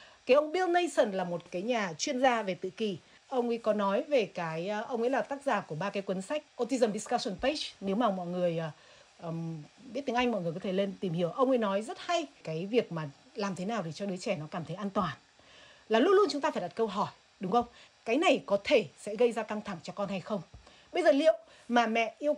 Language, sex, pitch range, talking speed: Vietnamese, female, 190-275 Hz, 260 wpm